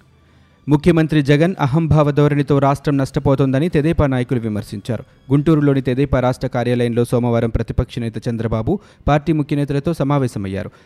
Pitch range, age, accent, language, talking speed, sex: 120-150 Hz, 30-49, native, Telugu, 105 wpm, male